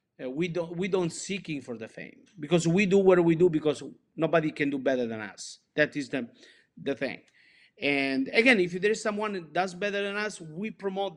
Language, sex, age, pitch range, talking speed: English, male, 50-69, 140-185 Hz, 210 wpm